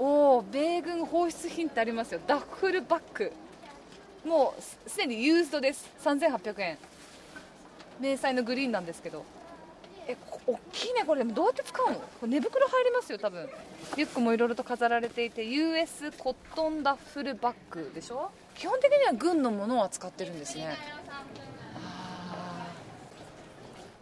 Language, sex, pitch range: Japanese, female, 235-335 Hz